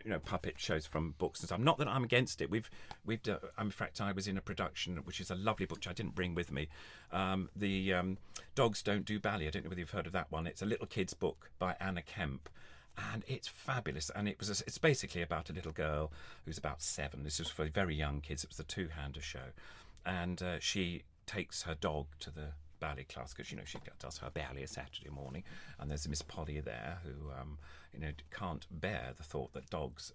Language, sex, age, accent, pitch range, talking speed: English, male, 40-59, British, 75-95 Hz, 245 wpm